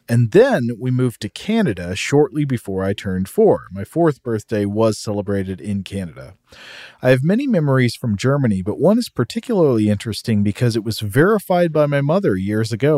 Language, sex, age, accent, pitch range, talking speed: English, male, 40-59, American, 105-150 Hz, 175 wpm